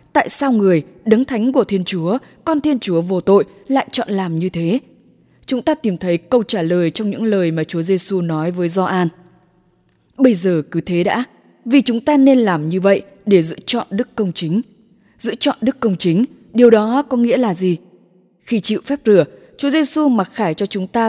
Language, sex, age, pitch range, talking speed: English, female, 20-39, 180-245 Hz, 210 wpm